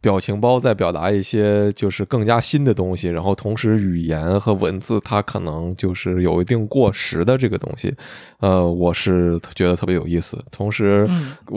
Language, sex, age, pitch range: Chinese, male, 20-39, 90-120 Hz